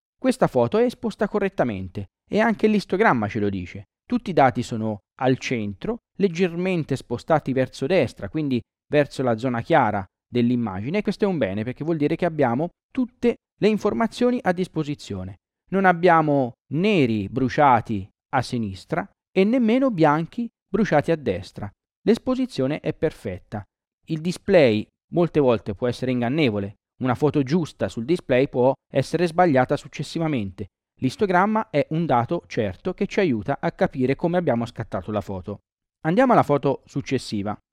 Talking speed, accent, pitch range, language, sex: 145 wpm, native, 120-180 Hz, Italian, male